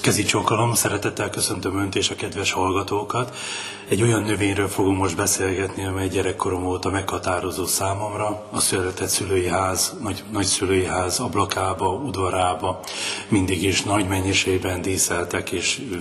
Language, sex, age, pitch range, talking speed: Hungarian, male, 30-49, 95-105 Hz, 125 wpm